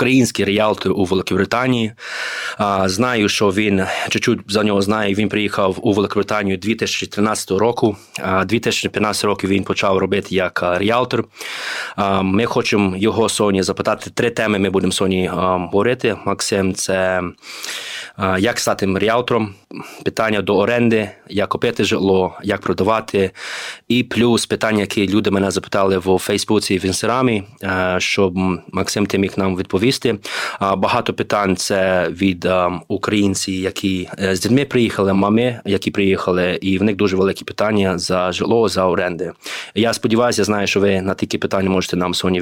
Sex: male